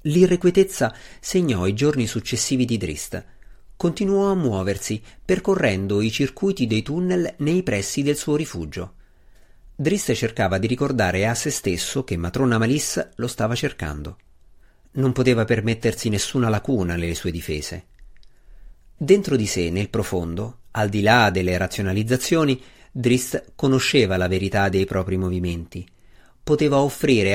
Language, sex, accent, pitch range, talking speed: Italian, male, native, 100-140 Hz, 130 wpm